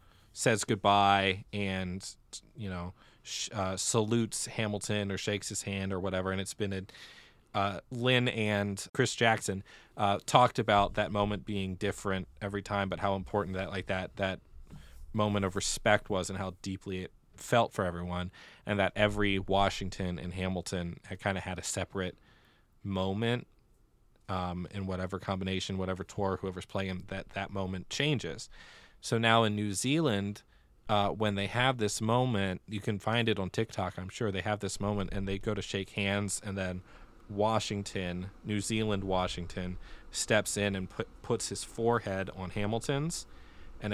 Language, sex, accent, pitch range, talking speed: English, male, American, 95-105 Hz, 165 wpm